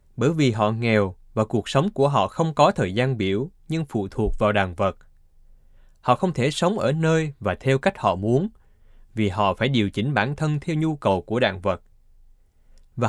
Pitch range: 100-140 Hz